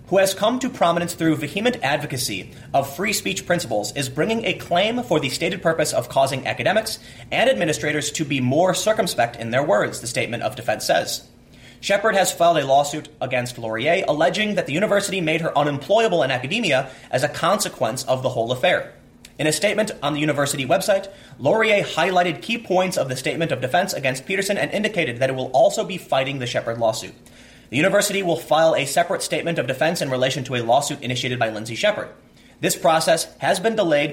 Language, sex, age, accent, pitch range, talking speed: English, male, 30-49, American, 130-190 Hz, 195 wpm